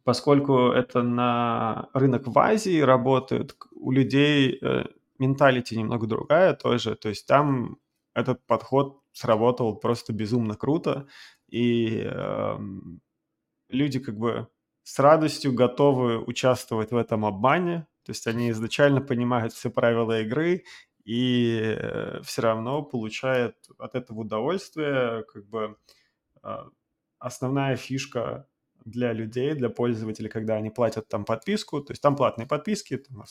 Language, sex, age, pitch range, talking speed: Russian, male, 20-39, 115-135 Hz, 130 wpm